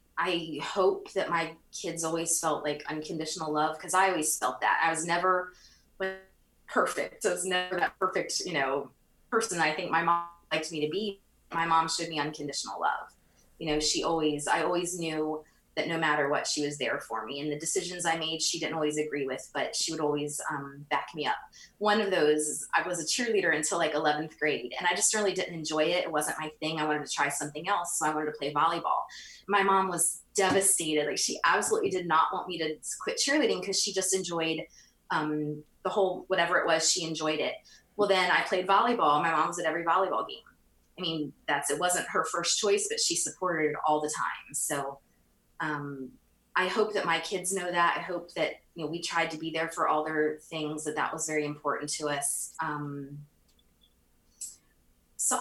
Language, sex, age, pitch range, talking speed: English, female, 20-39, 150-180 Hz, 210 wpm